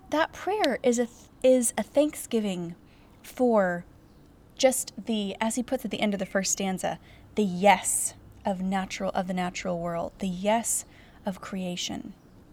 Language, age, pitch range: English, 20-39, 180-240 Hz